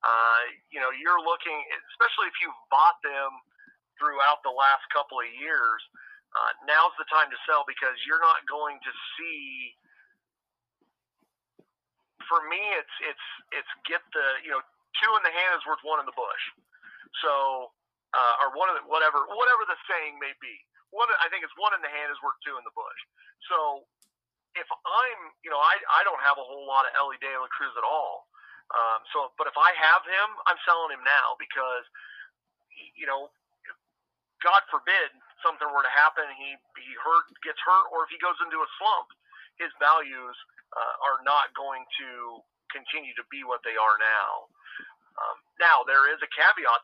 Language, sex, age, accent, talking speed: English, male, 40-59, American, 185 wpm